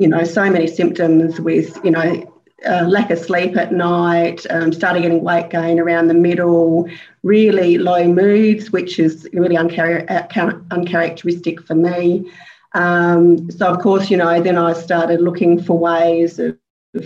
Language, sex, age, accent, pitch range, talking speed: English, female, 40-59, Australian, 170-185 Hz, 160 wpm